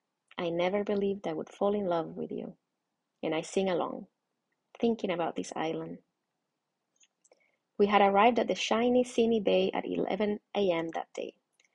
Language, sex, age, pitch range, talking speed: English, female, 20-39, 175-210 Hz, 160 wpm